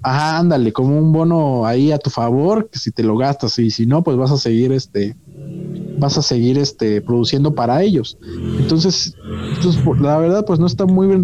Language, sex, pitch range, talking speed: Spanish, male, 120-155 Hz, 210 wpm